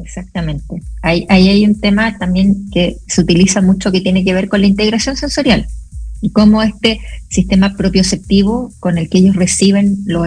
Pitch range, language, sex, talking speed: 180-220 Hz, Spanish, female, 170 wpm